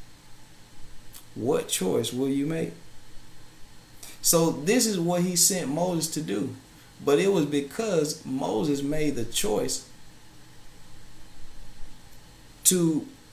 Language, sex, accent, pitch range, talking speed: English, male, American, 130-175 Hz, 105 wpm